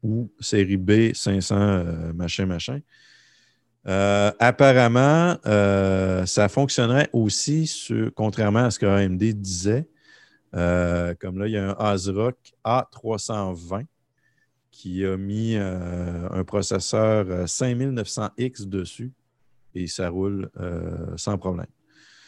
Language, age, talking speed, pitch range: French, 50-69, 110 wpm, 95-120 Hz